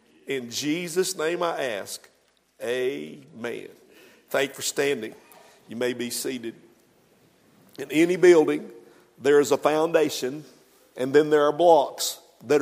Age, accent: 50-69, American